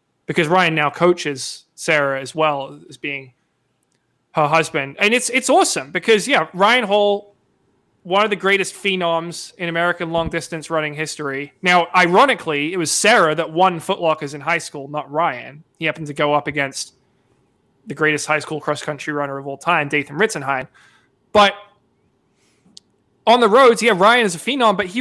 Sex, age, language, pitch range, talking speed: male, 20-39, English, 160-200 Hz, 175 wpm